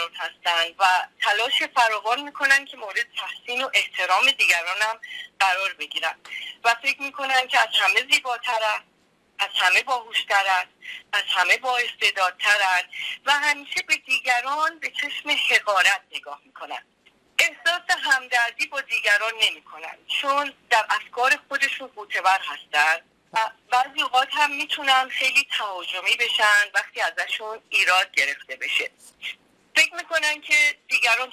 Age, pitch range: 40-59, 205-285 Hz